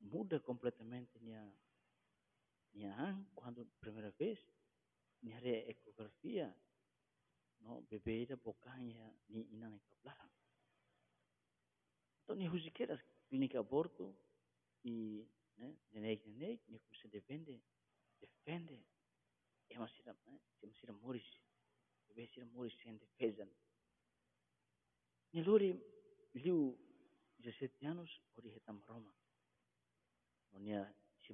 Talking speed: 85 wpm